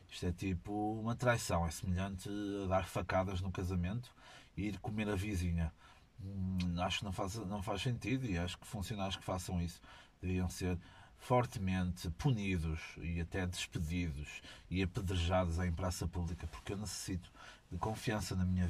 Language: Portuguese